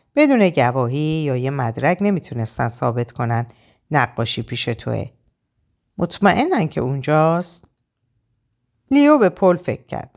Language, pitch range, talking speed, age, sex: Persian, 120-180 Hz, 110 wpm, 50-69, female